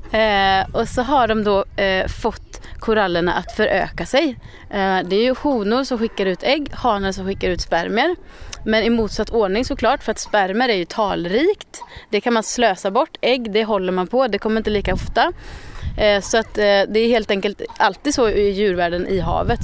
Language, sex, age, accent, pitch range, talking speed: Swedish, female, 30-49, native, 190-240 Hz, 200 wpm